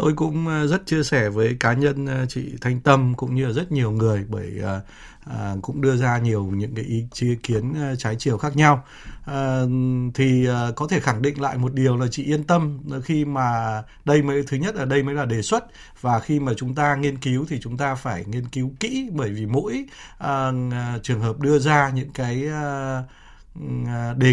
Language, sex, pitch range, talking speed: Vietnamese, male, 120-145 Hz, 205 wpm